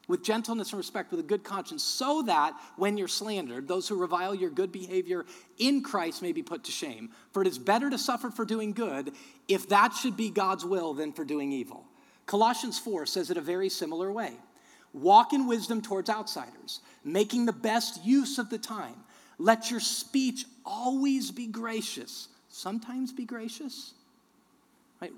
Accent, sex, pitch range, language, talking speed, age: American, male, 190-270 Hz, English, 180 wpm, 40-59